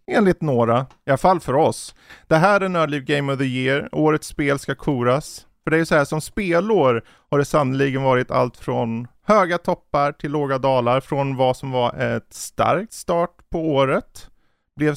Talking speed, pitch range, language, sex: 190 wpm, 115-150 Hz, Swedish, male